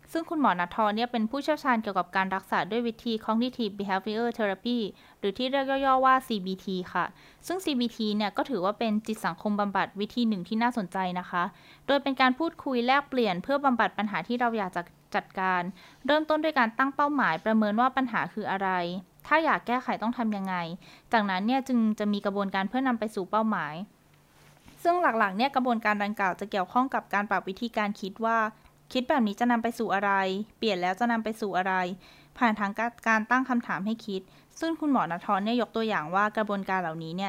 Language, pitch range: Thai, 195-245 Hz